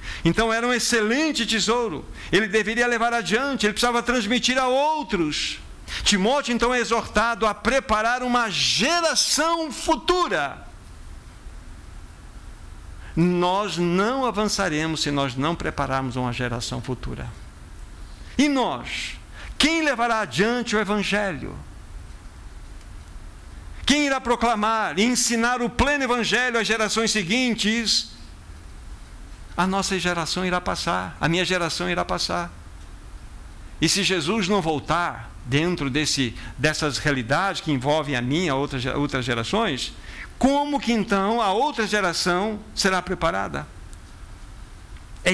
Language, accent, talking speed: Portuguese, Brazilian, 115 wpm